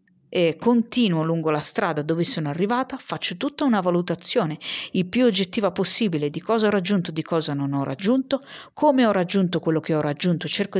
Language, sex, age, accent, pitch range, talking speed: Italian, female, 40-59, native, 165-215 Hz, 185 wpm